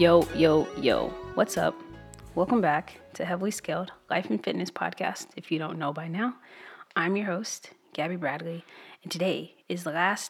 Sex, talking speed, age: female, 175 wpm, 30-49